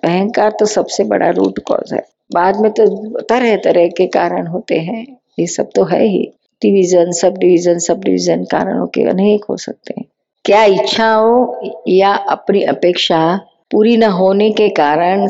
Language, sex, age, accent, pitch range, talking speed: Hindi, female, 50-69, native, 165-215 Hz, 160 wpm